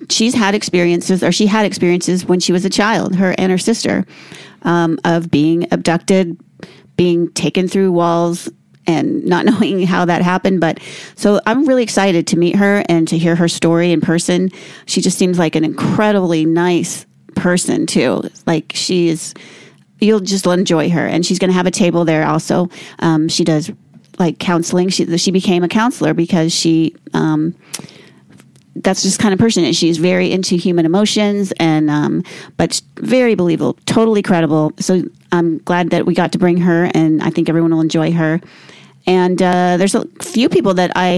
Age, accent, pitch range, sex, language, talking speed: 30-49, American, 170-195 Hz, female, English, 180 wpm